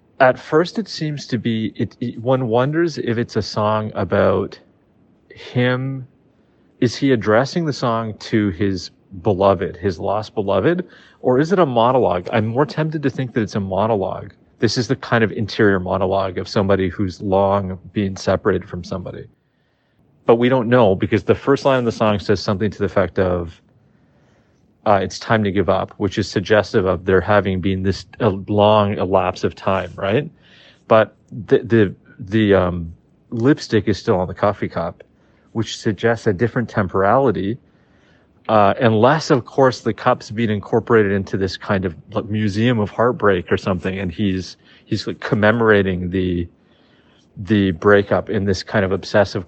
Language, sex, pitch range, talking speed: English, male, 95-120 Hz, 170 wpm